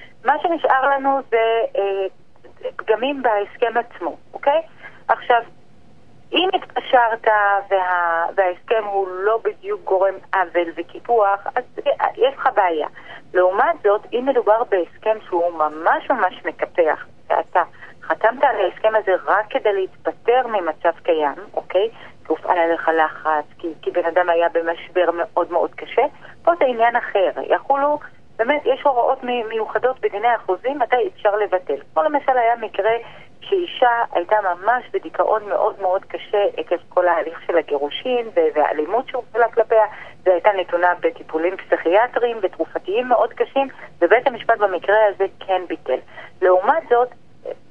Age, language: 30-49, Hebrew